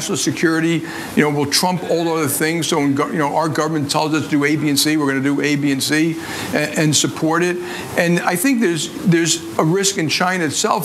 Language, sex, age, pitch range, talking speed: English, male, 50-69, 145-175 Hz, 240 wpm